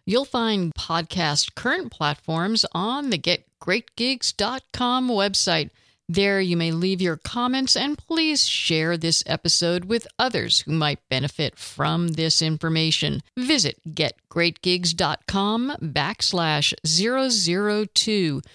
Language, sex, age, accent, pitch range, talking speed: English, female, 50-69, American, 160-215 Hz, 105 wpm